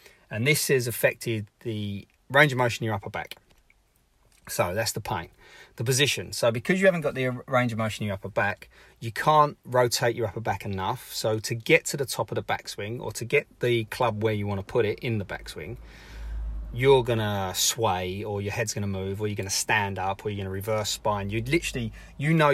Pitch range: 100-120 Hz